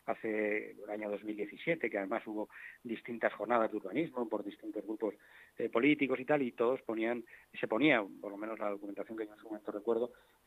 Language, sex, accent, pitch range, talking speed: Spanish, male, Spanish, 110-130 Hz, 200 wpm